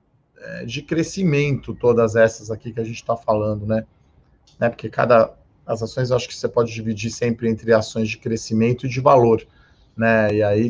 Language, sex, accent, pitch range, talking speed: Portuguese, male, Brazilian, 110-130 Hz, 180 wpm